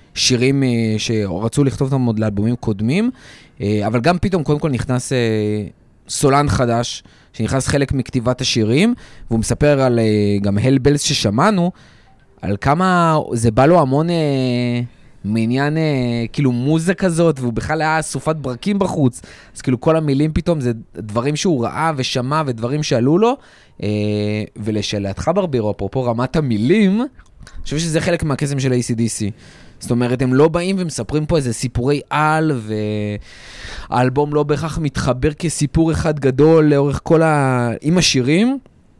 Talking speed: 135 wpm